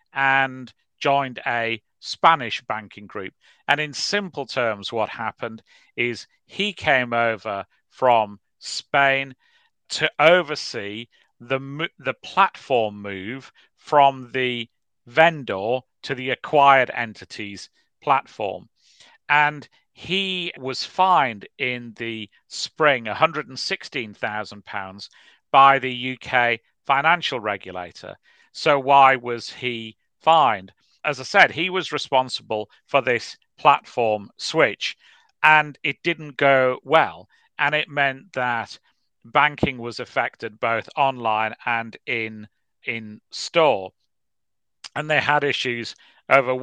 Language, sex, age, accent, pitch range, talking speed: English, male, 40-59, British, 115-145 Hz, 110 wpm